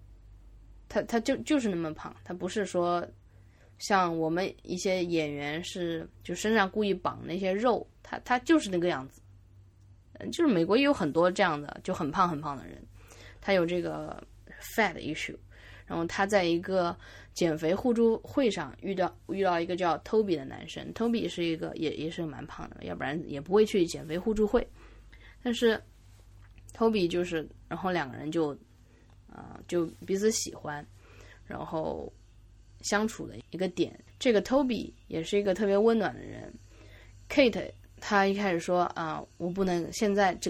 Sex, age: female, 20-39